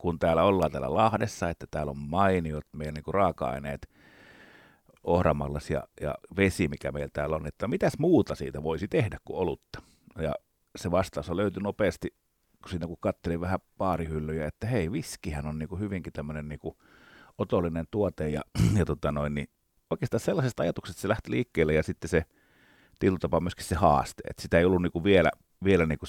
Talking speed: 175 wpm